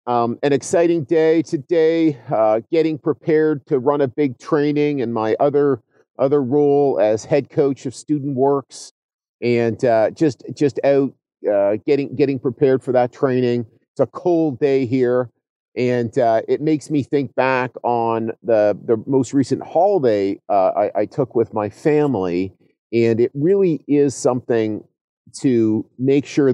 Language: English